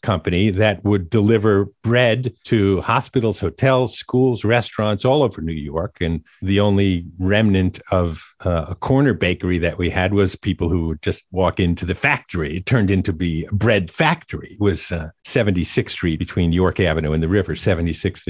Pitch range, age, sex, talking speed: 90-110 Hz, 50-69, male, 175 wpm